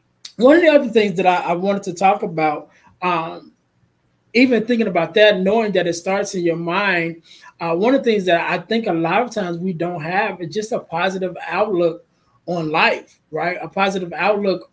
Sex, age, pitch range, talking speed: male, 20-39, 175-215 Hz, 205 wpm